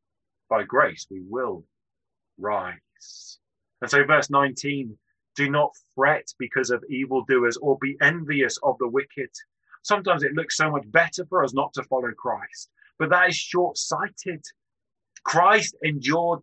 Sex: male